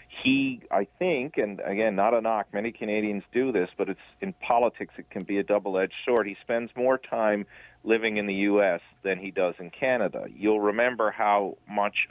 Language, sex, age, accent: English, male, 40-59, American